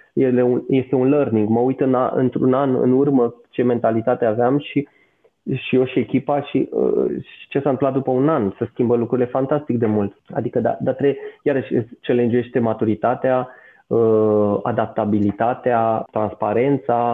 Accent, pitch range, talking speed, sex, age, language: native, 120-145 Hz, 155 wpm, male, 20-39, Romanian